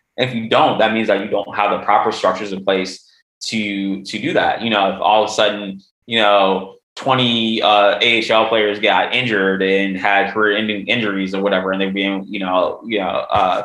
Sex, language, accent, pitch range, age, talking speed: male, English, American, 100-110 Hz, 20-39, 215 wpm